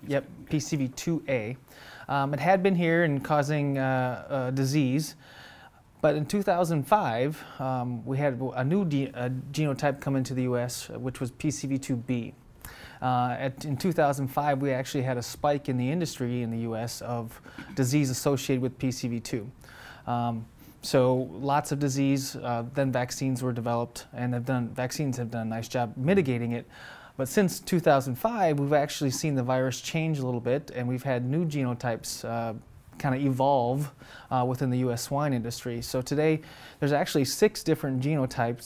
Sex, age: male, 20-39